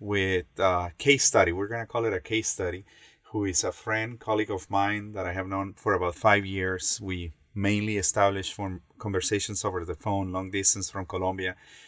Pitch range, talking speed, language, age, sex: 95-105 Hz, 190 wpm, English, 30-49, male